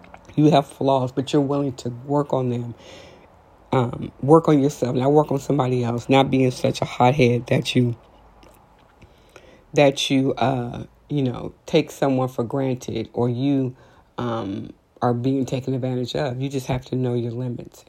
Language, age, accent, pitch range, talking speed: English, 40-59, American, 115-130 Hz, 170 wpm